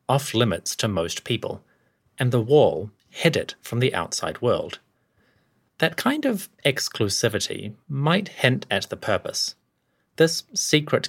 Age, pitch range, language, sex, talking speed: 30-49, 110-145 Hz, English, male, 130 wpm